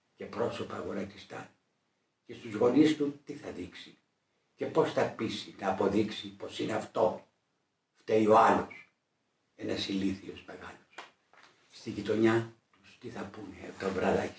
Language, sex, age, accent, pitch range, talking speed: Greek, male, 60-79, Spanish, 100-135 Hz, 140 wpm